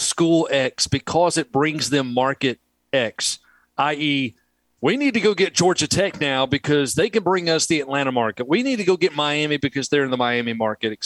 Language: English